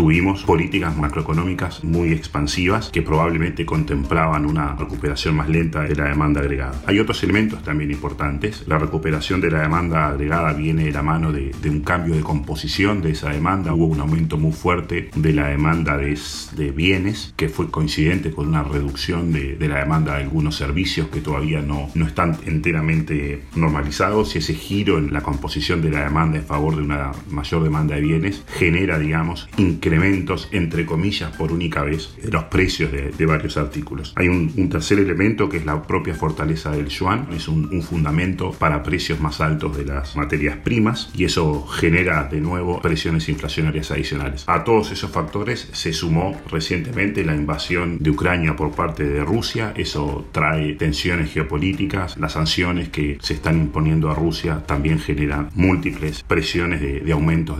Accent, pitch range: Argentinian, 75-85 Hz